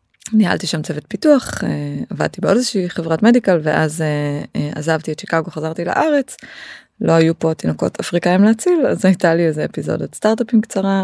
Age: 20-39